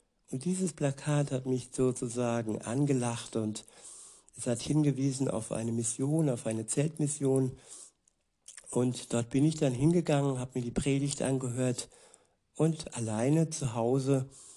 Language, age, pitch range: German, 60-79, 120-145 Hz